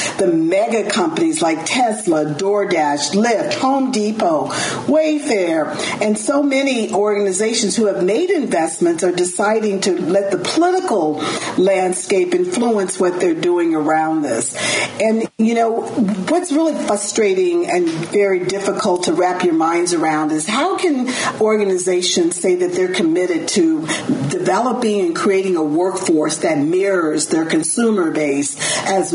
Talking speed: 135 wpm